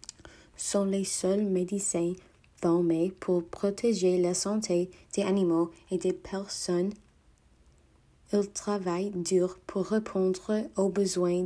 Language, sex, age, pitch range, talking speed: English, female, 20-39, 175-200 Hz, 110 wpm